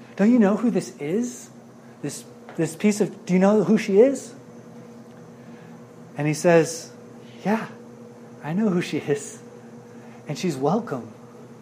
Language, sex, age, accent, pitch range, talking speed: English, male, 30-49, American, 120-195 Hz, 145 wpm